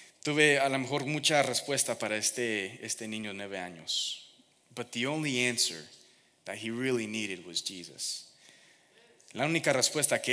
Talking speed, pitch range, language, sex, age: 155 wpm, 115-145 Hz, English, male, 30-49